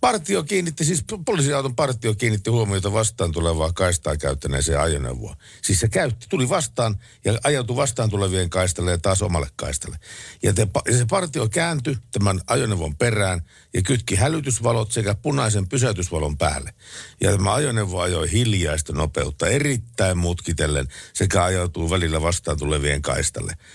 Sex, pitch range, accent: male, 80-115 Hz, native